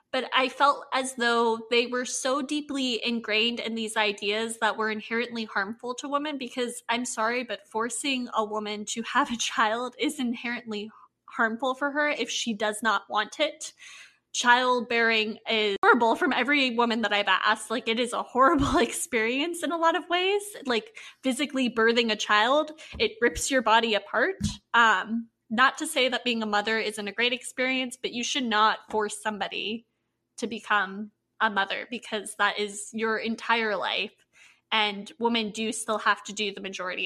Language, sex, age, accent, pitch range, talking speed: English, female, 20-39, American, 215-255 Hz, 175 wpm